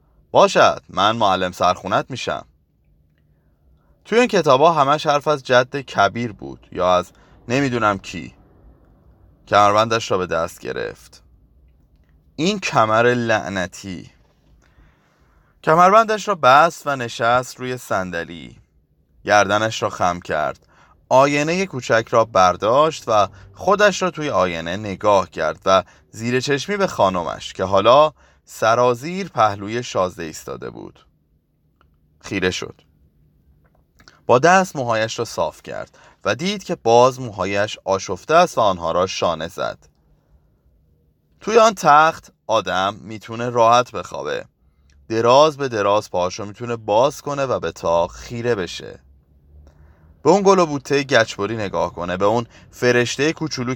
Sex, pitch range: male, 85-140 Hz